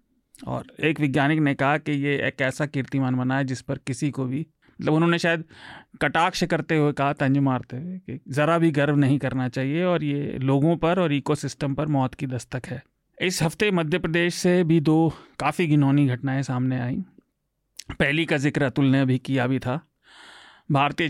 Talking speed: 190 wpm